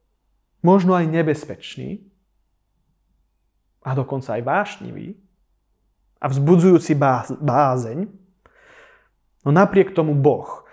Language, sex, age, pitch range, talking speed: Slovak, male, 20-39, 135-185 Hz, 80 wpm